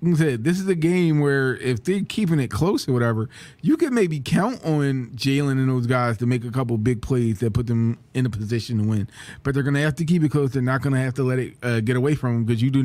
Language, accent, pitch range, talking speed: English, American, 120-150 Hz, 270 wpm